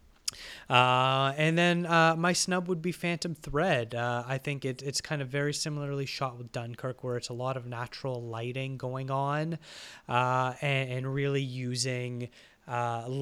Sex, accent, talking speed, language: male, American, 165 wpm, English